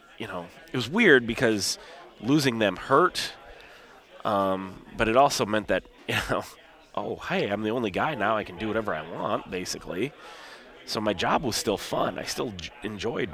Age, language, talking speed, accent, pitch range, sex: 30-49, English, 180 wpm, American, 95-115 Hz, male